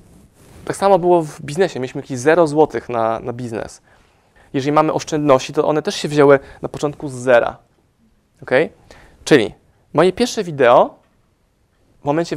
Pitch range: 135-170 Hz